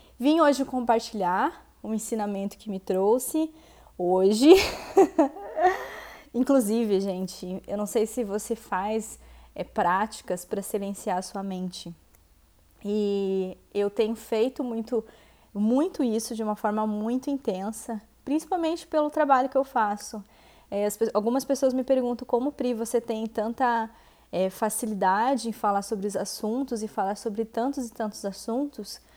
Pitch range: 210-260 Hz